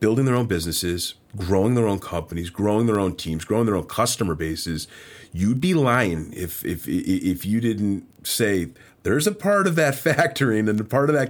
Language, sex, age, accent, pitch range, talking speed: English, male, 40-59, American, 95-125 Hz, 195 wpm